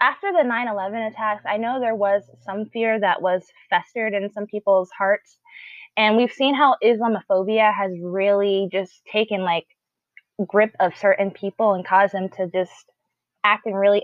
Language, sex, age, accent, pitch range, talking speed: English, female, 20-39, American, 195-245 Hz, 165 wpm